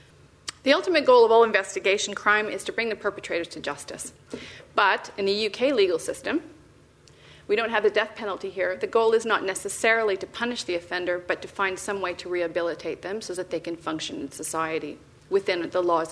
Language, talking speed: English, 200 wpm